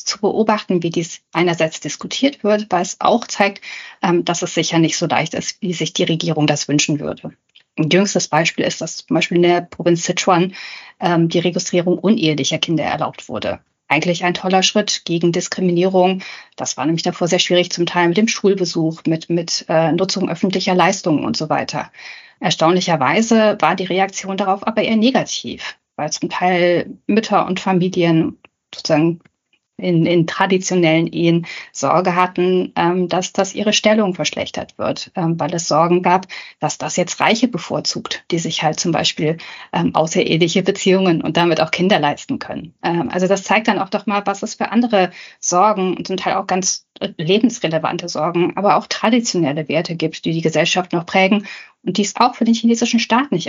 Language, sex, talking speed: English, female, 175 wpm